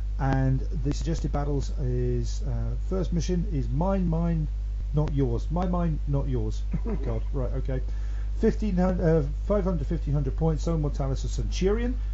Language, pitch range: English, 110-150 Hz